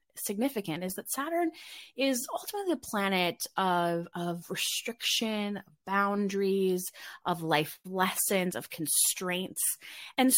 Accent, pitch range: American, 175-225 Hz